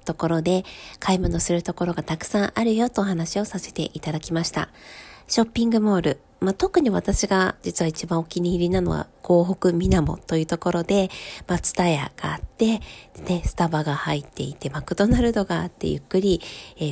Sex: female